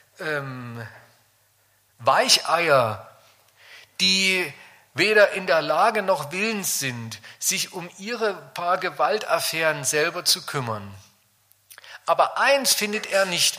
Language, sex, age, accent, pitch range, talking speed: German, male, 40-59, German, 115-185 Hz, 95 wpm